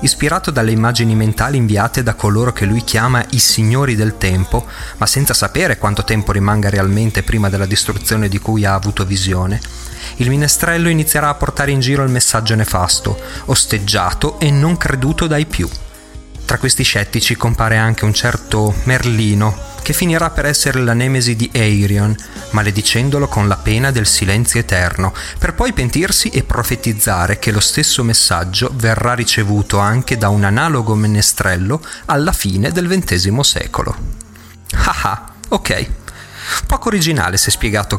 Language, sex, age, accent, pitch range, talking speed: Italian, male, 30-49, native, 100-130 Hz, 150 wpm